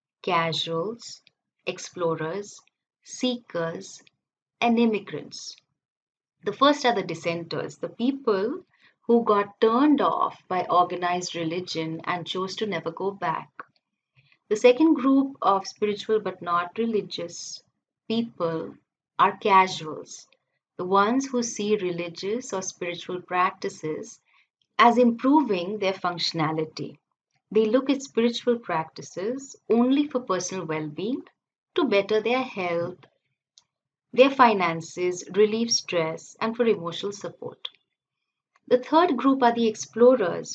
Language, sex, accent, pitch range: English, female, Indian, 175-235 Hz